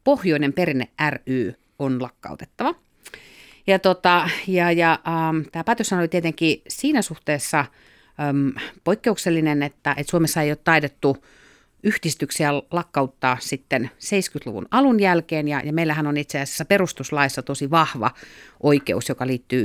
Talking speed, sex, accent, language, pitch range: 115 wpm, female, native, Finnish, 135-175 Hz